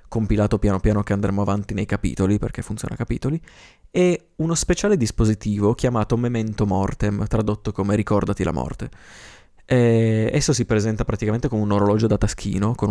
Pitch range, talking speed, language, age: 105-125 Hz, 165 wpm, Italian, 20-39